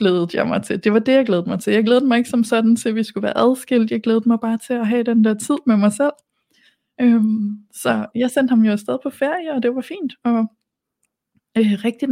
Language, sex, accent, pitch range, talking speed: Danish, female, native, 210-250 Hz, 250 wpm